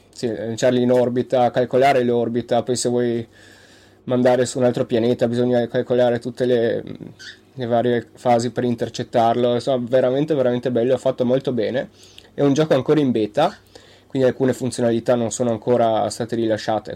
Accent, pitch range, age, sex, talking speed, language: native, 115-125 Hz, 20-39, male, 155 wpm, Italian